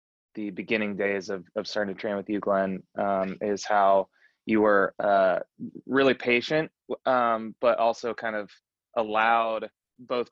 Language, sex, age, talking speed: English, male, 20-39, 150 wpm